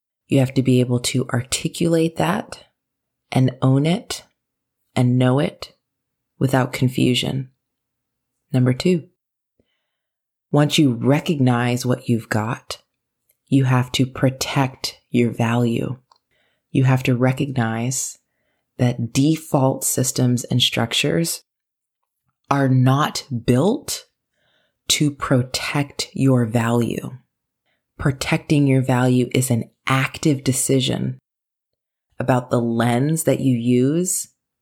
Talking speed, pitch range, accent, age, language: 100 wpm, 120-135 Hz, American, 30-49, English